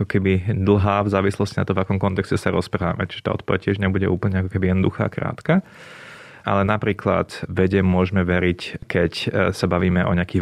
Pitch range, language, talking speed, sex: 90-100 Hz, Slovak, 180 wpm, male